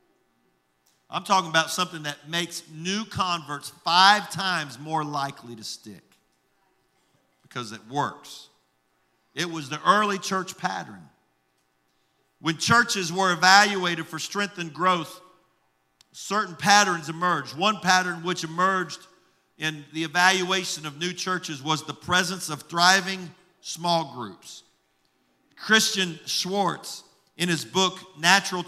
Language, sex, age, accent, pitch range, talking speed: English, male, 50-69, American, 135-190 Hz, 120 wpm